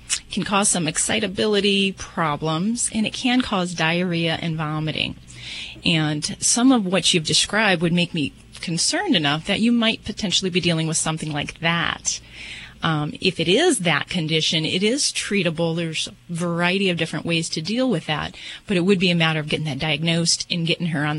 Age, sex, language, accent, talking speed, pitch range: 30-49, female, English, American, 185 wpm, 160-200 Hz